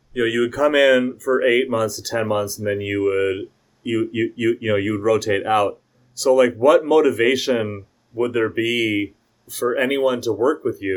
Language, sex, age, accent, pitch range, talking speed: English, male, 30-49, American, 105-165 Hz, 210 wpm